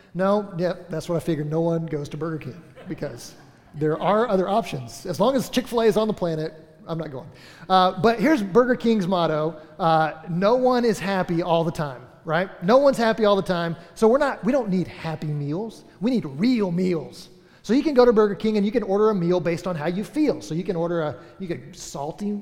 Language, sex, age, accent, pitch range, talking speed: English, male, 30-49, American, 155-205 Hz, 235 wpm